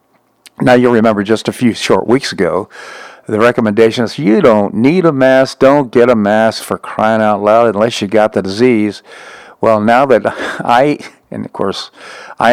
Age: 50-69